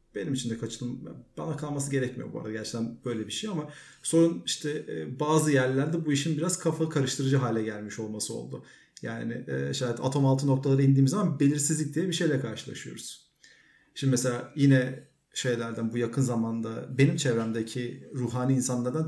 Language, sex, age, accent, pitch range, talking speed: Turkish, male, 40-59, native, 125-160 Hz, 155 wpm